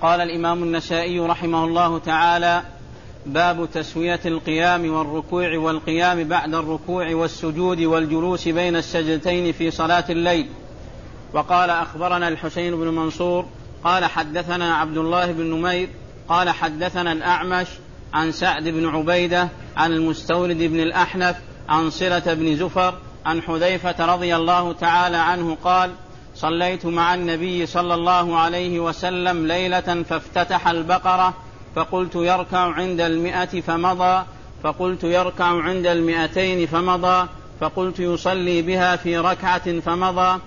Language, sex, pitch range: Arabic, male, 165-180 Hz